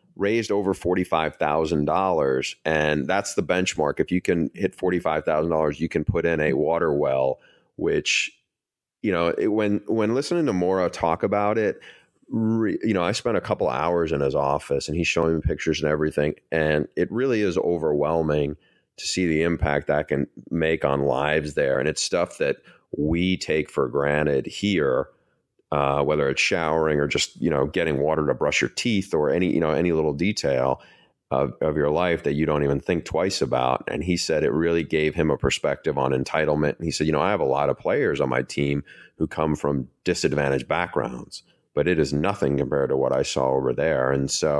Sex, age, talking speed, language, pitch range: male, 30-49, 200 wpm, English, 75-90 Hz